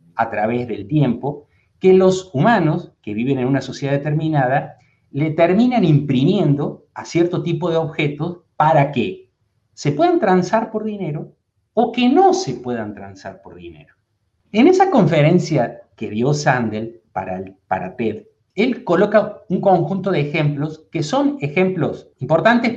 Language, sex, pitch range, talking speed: Spanish, male, 120-185 Hz, 145 wpm